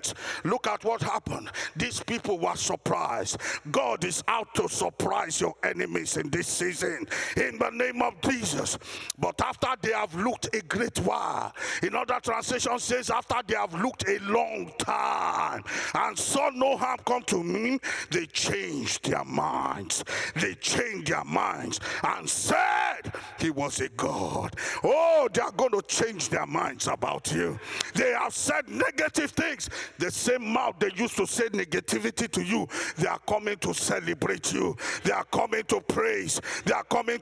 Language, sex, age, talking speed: English, male, 50-69, 165 wpm